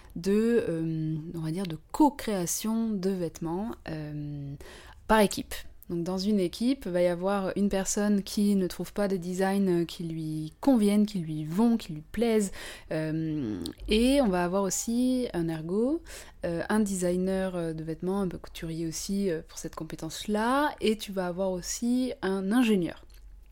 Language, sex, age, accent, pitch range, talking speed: French, female, 20-39, French, 165-210 Hz, 165 wpm